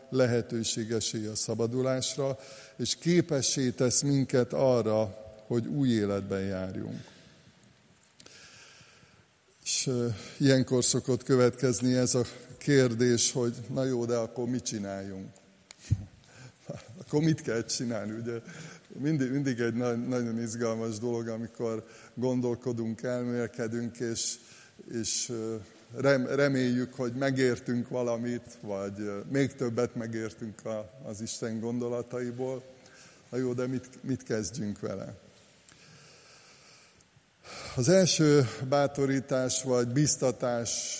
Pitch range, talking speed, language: 115-130 Hz, 90 wpm, Hungarian